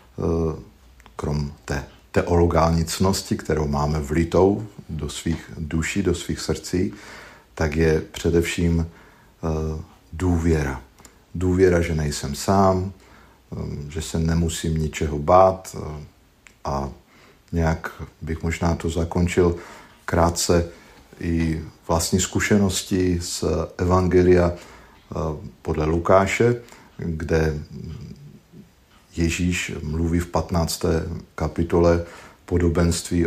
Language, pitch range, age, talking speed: Slovak, 80-90 Hz, 50-69, 85 wpm